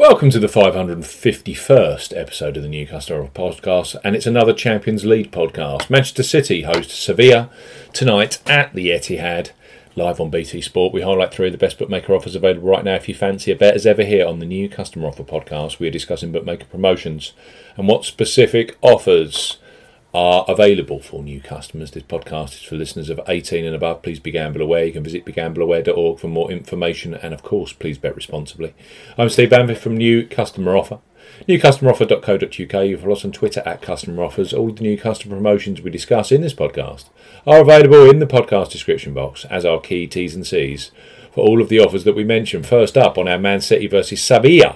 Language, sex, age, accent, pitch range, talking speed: English, male, 40-59, British, 85-125 Hz, 200 wpm